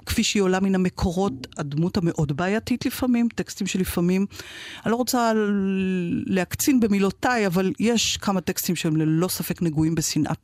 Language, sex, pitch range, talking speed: Hebrew, female, 165-210 Hz, 145 wpm